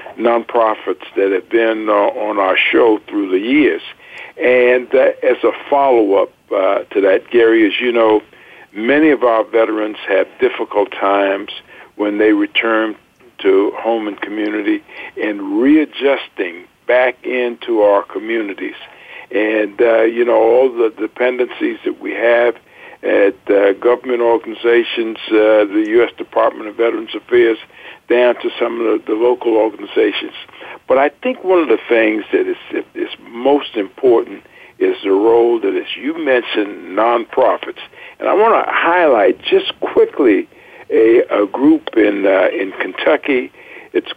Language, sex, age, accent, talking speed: English, male, 60-79, American, 145 wpm